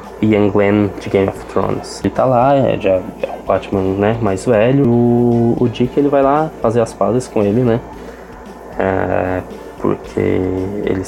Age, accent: 20-39, Brazilian